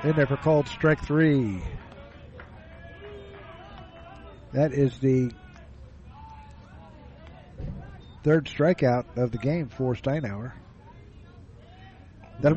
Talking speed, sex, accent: 80 wpm, male, American